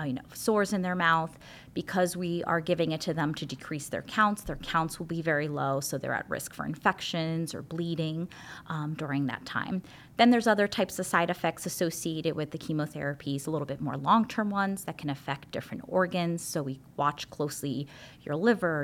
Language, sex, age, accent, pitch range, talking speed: English, female, 30-49, American, 145-185 Hz, 200 wpm